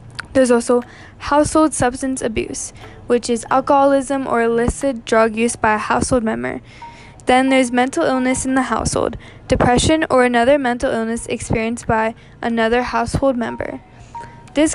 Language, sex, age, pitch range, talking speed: English, female, 10-29, 225-265 Hz, 140 wpm